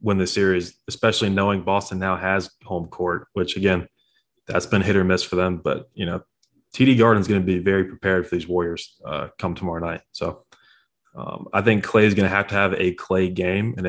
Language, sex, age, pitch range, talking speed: English, male, 20-39, 90-105 Hz, 225 wpm